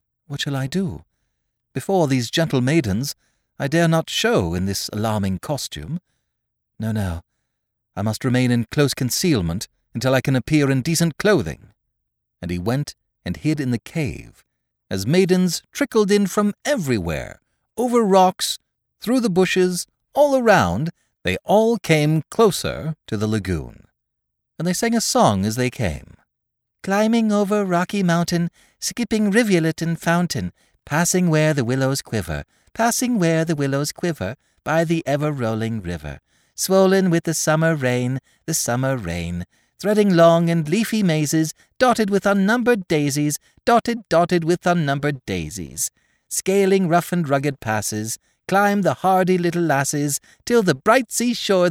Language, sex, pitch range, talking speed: English, male, 120-190 Hz, 145 wpm